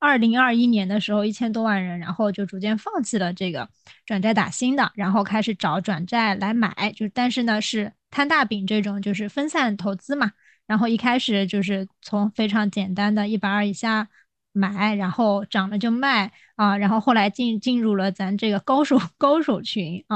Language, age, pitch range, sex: Chinese, 20-39, 195-240 Hz, female